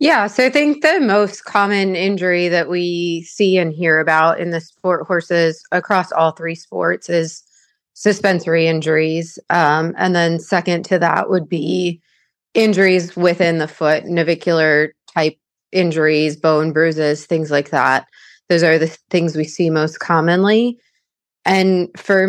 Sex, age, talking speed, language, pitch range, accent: female, 30-49, 150 wpm, English, 165-190 Hz, American